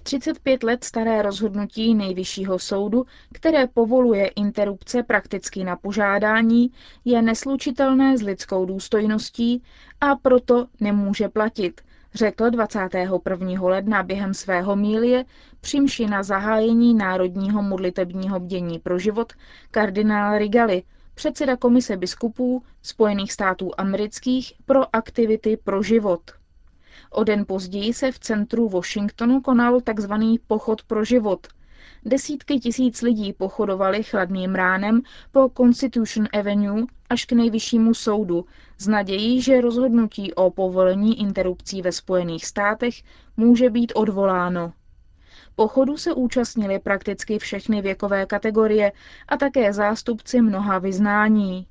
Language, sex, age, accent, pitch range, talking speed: Czech, female, 20-39, native, 195-240 Hz, 115 wpm